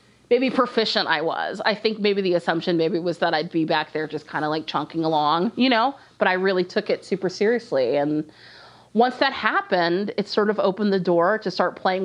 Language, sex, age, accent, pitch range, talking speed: English, female, 30-49, American, 170-215 Hz, 220 wpm